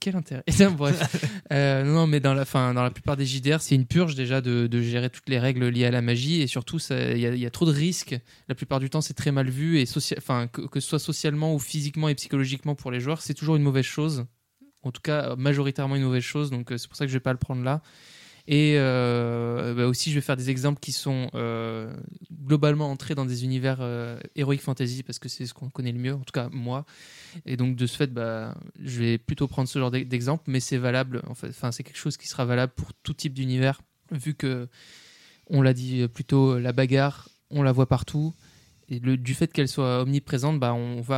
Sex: male